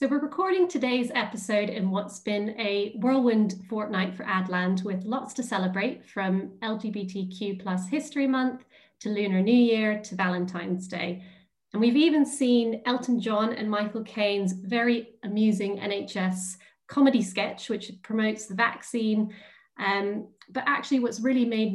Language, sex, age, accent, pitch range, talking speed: English, female, 30-49, British, 190-235 Hz, 145 wpm